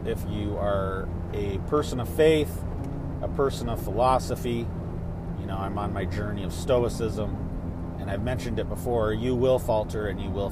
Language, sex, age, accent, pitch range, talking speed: English, male, 30-49, American, 85-110 Hz, 170 wpm